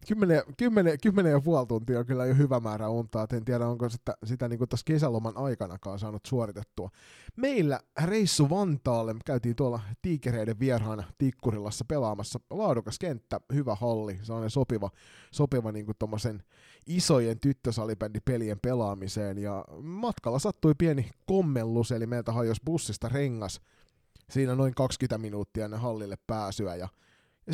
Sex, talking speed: male, 135 wpm